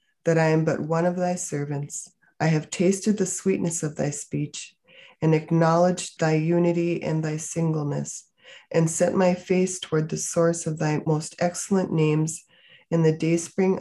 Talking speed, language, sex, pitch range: 165 wpm, English, female, 150-175 Hz